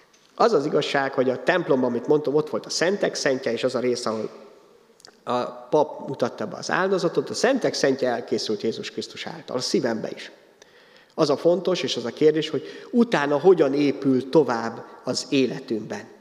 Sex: male